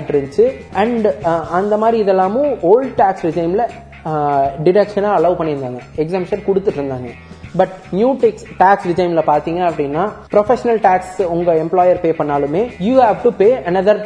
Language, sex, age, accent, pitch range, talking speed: Tamil, male, 20-39, native, 160-210 Hz, 50 wpm